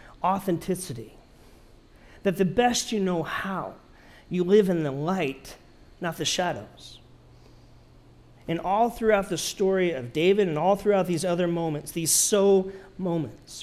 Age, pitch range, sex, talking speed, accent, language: 40-59, 140-180 Hz, male, 135 wpm, American, English